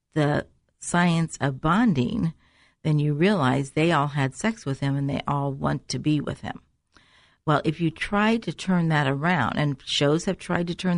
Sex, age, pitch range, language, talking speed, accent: female, 50-69, 140-170 Hz, English, 190 wpm, American